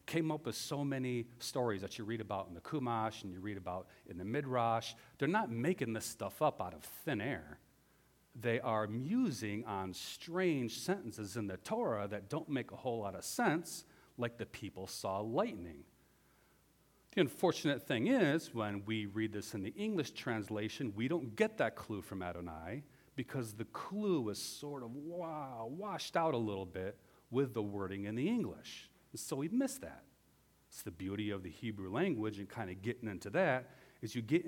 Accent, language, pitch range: American, English, 100-135 Hz